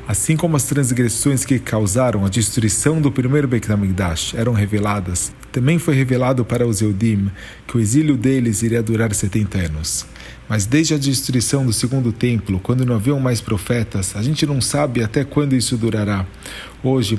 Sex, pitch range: male, 105-130 Hz